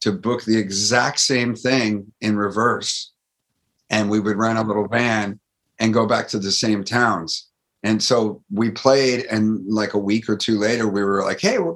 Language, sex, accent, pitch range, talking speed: English, male, American, 100-120 Hz, 195 wpm